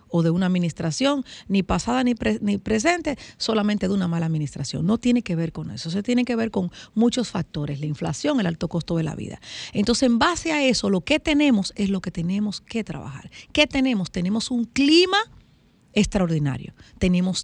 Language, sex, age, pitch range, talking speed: Spanish, female, 40-59, 170-245 Hz, 195 wpm